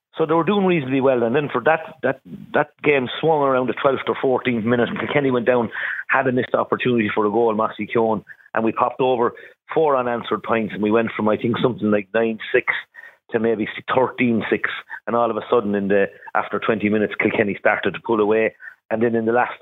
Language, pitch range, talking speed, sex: English, 105-125 Hz, 225 wpm, male